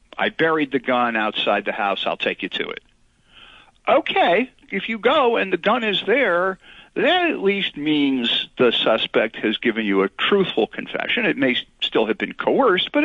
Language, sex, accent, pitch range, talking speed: English, male, American, 130-200 Hz, 185 wpm